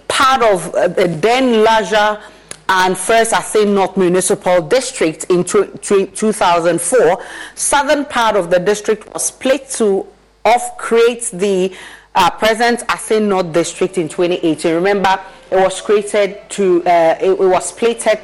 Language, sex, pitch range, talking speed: English, female, 185-230 Hz, 135 wpm